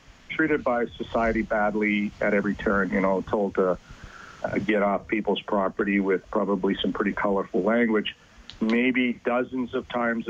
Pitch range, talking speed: 105-125 Hz, 150 wpm